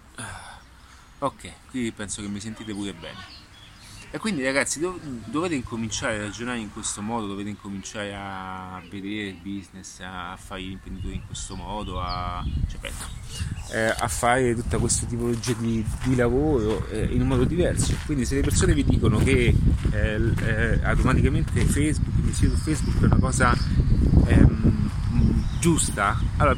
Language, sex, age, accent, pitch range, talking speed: Italian, male, 30-49, native, 75-115 Hz, 155 wpm